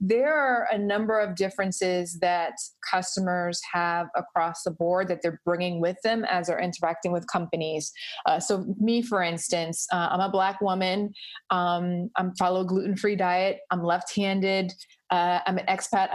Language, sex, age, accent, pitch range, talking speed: English, female, 20-39, American, 175-210 Hz, 170 wpm